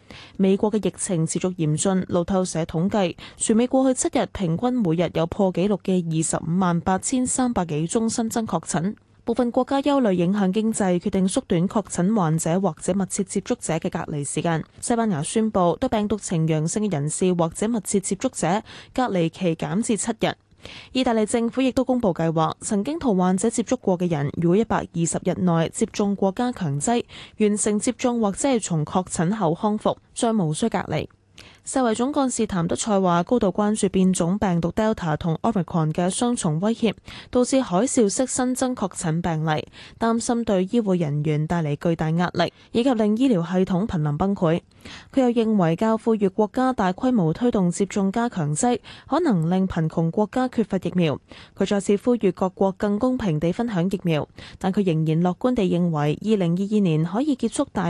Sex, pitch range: female, 170-230 Hz